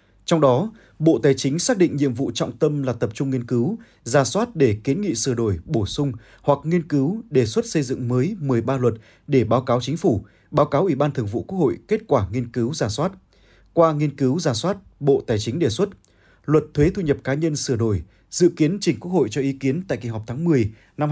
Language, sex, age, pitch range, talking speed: Vietnamese, male, 20-39, 120-155 Hz, 245 wpm